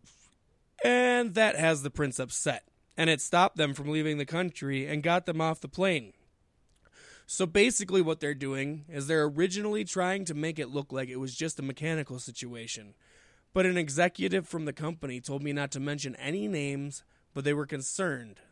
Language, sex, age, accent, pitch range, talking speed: English, male, 20-39, American, 140-180 Hz, 185 wpm